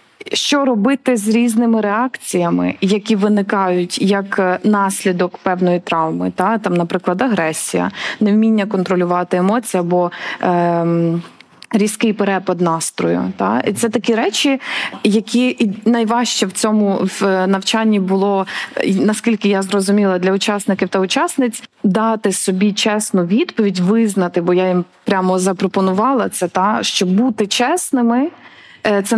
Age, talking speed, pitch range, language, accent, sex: 20-39, 120 wpm, 190-225 Hz, Ukrainian, native, female